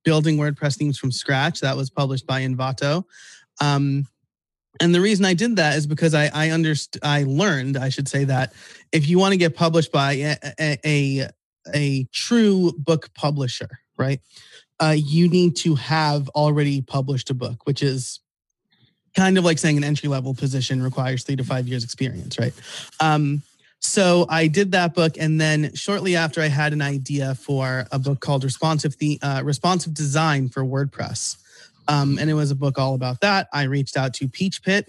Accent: American